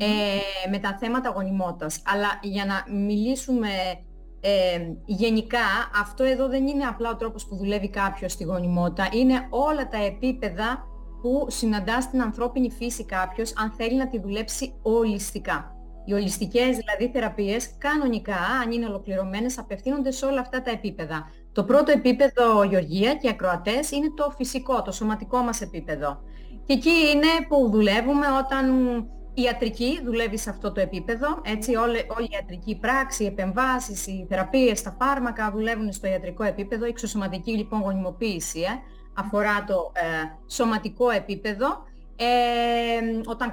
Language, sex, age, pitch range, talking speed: Greek, female, 30-49, 200-255 Hz, 150 wpm